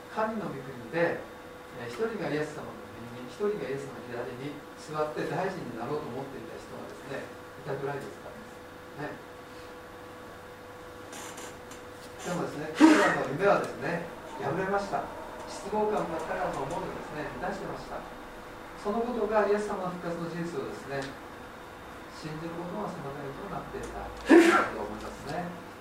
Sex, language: male, Japanese